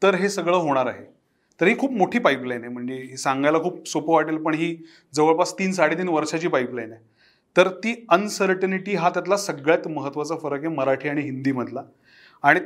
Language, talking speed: Marathi, 175 wpm